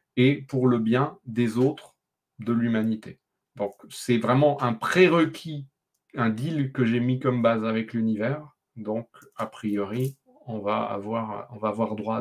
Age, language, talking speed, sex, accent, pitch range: 30-49, French, 155 wpm, male, French, 115-150 Hz